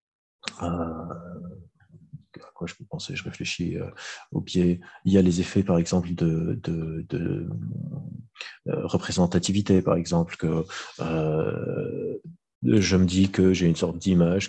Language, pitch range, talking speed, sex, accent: French, 85-95 Hz, 140 wpm, male, French